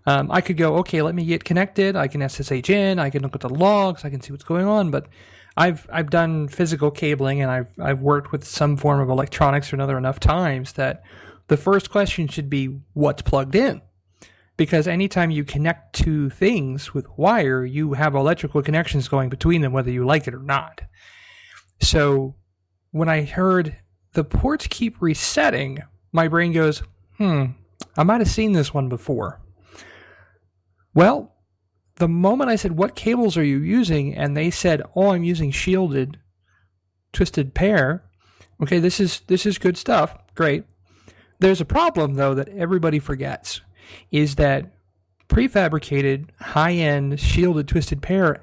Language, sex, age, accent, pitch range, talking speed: English, male, 30-49, American, 130-175 Hz, 165 wpm